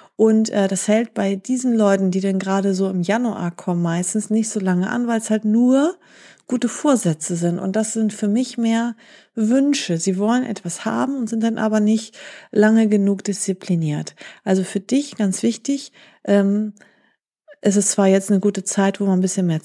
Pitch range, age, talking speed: 180-220 Hz, 40-59, 190 wpm